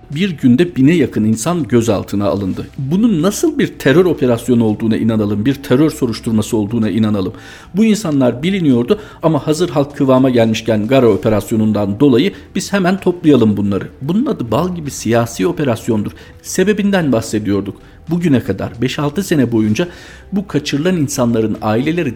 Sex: male